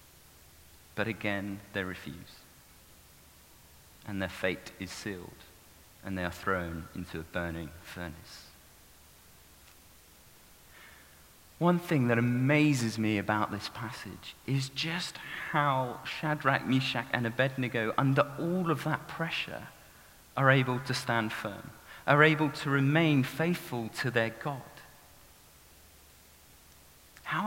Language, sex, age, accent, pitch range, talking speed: English, male, 40-59, British, 85-145 Hz, 110 wpm